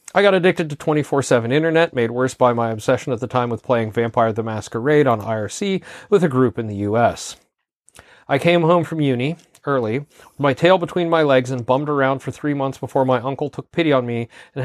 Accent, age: American, 40-59